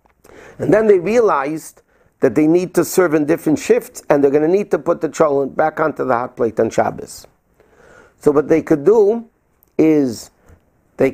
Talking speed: 190 wpm